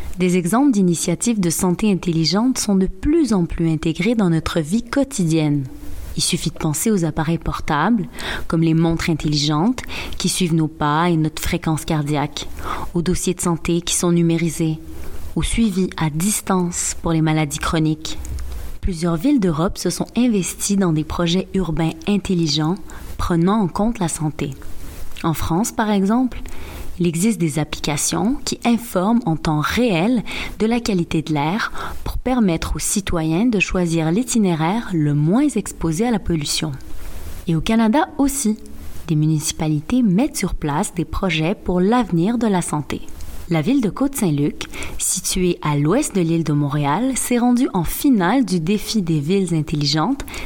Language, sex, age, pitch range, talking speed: English, female, 20-39, 160-215 Hz, 160 wpm